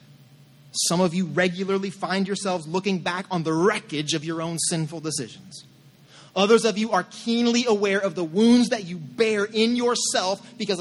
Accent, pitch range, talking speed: American, 160-220 Hz, 170 wpm